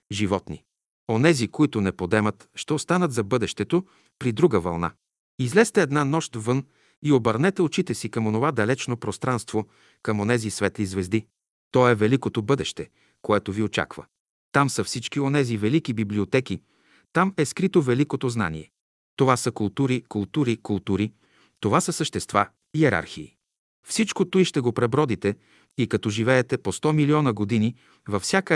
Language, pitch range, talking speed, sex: Bulgarian, 110-150 Hz, 145 wpm, male